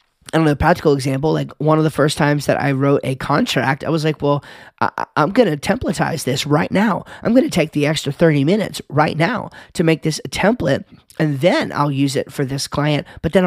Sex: male